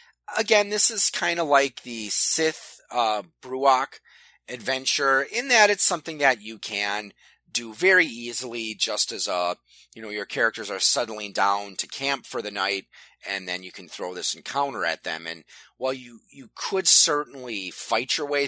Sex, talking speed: male, 175 wpm